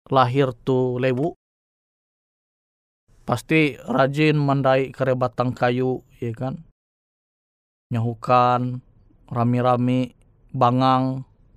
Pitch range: 115-145 Hz